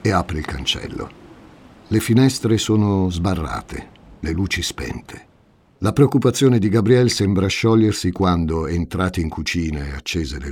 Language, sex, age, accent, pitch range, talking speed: Italian, male, 50-69, native, 80-110 Hz, 135 wpm